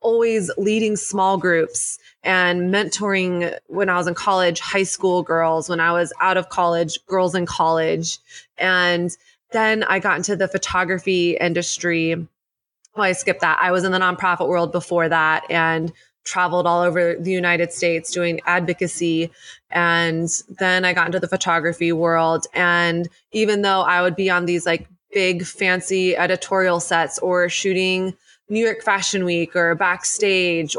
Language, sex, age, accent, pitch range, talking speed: English, female, 20-39, American, 170-190 Hz, 160 wpm